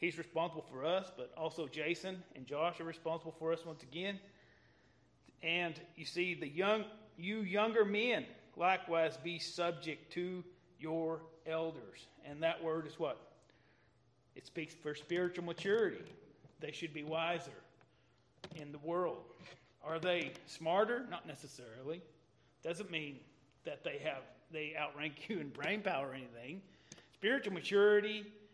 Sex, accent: male, American